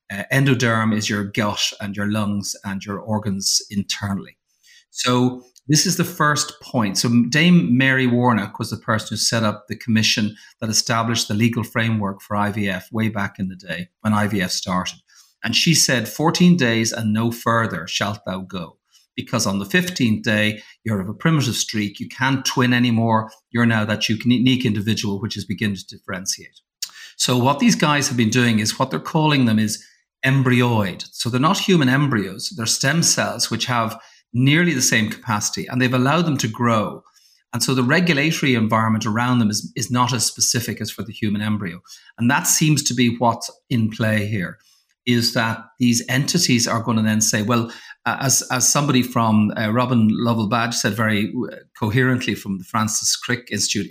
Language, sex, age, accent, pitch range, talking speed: English, male, 40-59, Irish, 105-125 Hz, 185 wpm